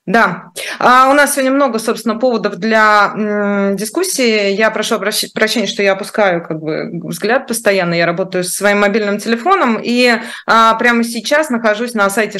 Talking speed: 170 wpm